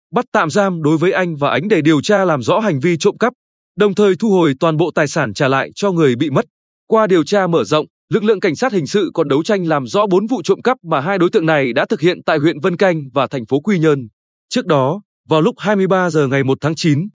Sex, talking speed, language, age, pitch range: male, 275 wpm, Vietnamese, 20-39, 150-200 Hz